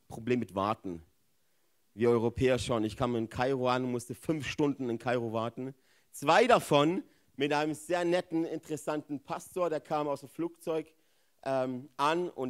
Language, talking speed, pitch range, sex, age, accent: German, 165 wpm, 140-195 Hz, male, 40-59, German